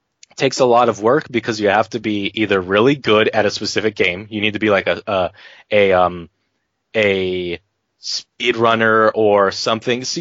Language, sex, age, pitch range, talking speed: English, male, 20-39, 100-125 Hz, 180 wpm